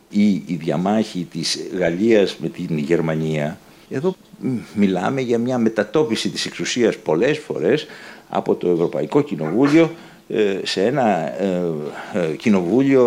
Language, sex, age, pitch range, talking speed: Greek, male, 60-79, 90-135 Hz, 110 wpm